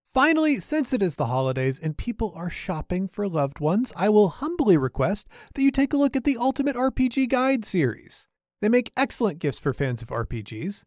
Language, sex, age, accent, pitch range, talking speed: English, male, 30-49, American, 145-235 Hz, 200 wpm